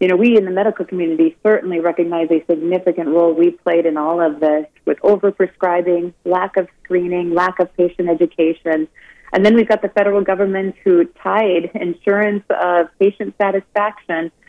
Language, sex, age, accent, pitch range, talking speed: English, female, 30-49, American, 175-205 Hz, 170 wpm